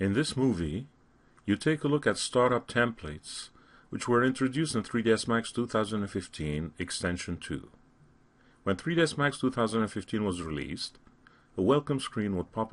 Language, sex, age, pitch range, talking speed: English, male, 40-59, 95-130 Hz, 140 wpm